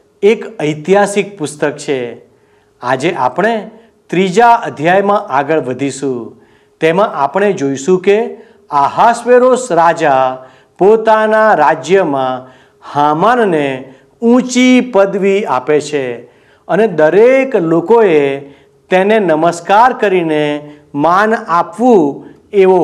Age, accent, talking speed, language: 50-69, native, 85 wpm, Gujarati